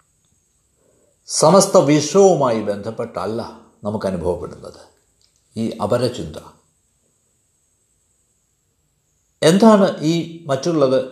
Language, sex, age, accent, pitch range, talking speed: Malayalam, male, 60-79, native, 130-200 Hz, 55 wpm